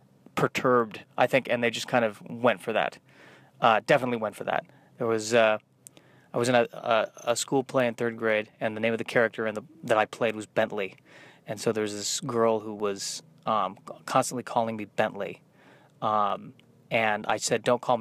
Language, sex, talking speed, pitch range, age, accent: English, male, 205 wpm, 110-130 Hz, 30-49, American